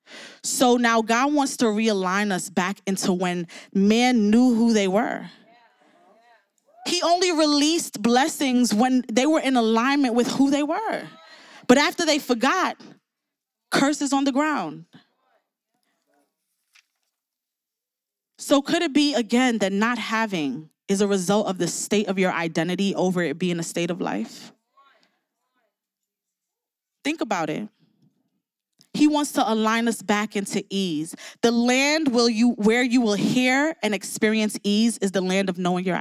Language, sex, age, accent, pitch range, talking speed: English, female, 20-39, American, 205-260 Hz, 145 wpm